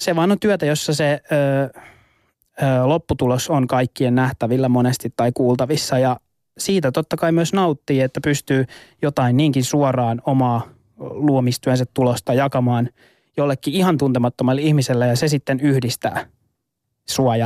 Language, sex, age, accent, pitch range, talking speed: Finnish, male, 20-39, native, 125-145 Hz, 135 wpm